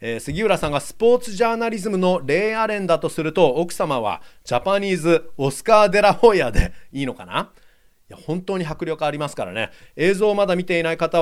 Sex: male